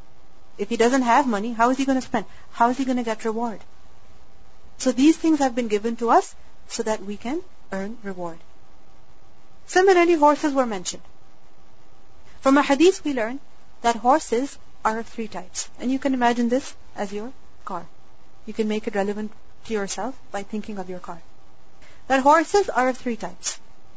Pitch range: 190-250 Hz